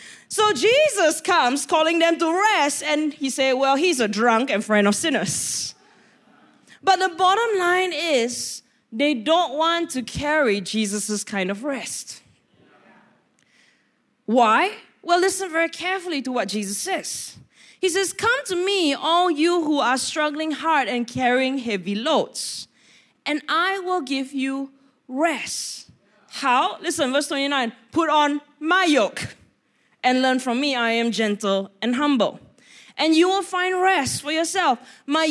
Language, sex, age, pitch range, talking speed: English, female, 20-39, 255-370 Hz, 150 wpm